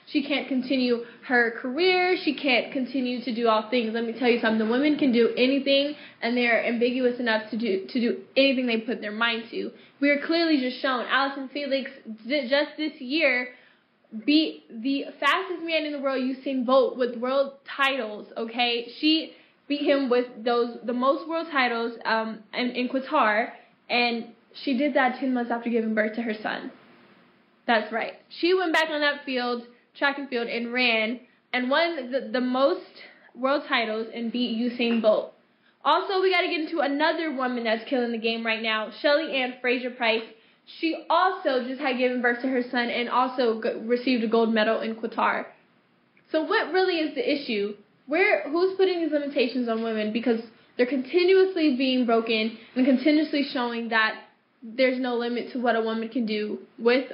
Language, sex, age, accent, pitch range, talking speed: English, female, 10-29, American, 230-285 Hz, 185 wpm